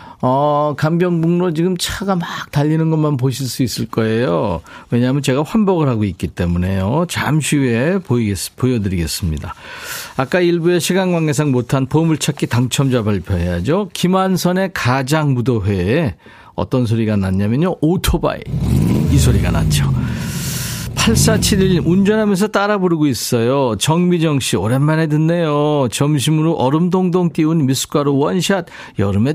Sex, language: male, Korean